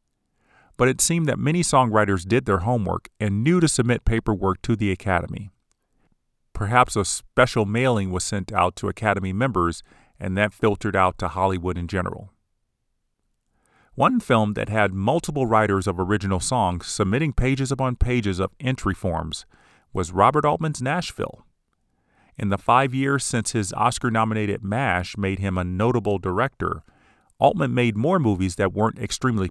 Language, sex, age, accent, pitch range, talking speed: English, male, 40-59, American, 95-130 Hz, 155 wpm